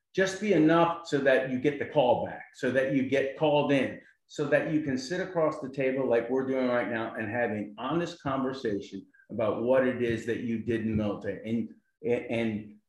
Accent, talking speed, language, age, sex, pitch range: American, 210 wpm, English, 50-69, male, 120-160 Hz